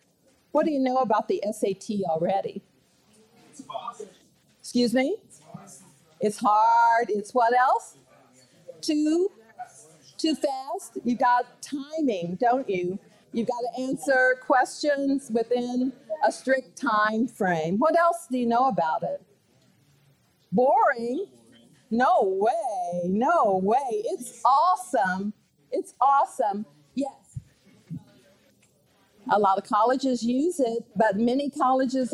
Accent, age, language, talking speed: American, 50-69, English, 110 wpm